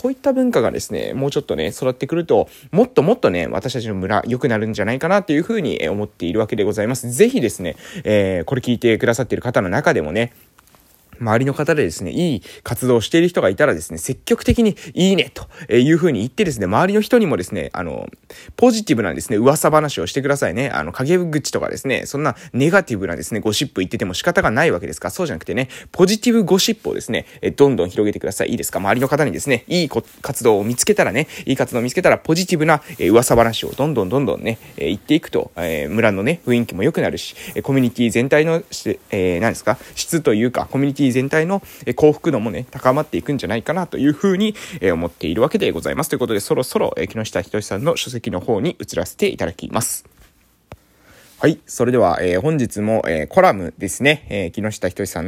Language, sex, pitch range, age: Japanese, male, 110-165 Hz, 20-39